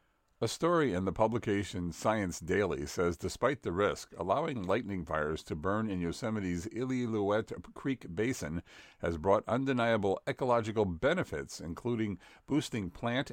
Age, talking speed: 50-69, 130 wpm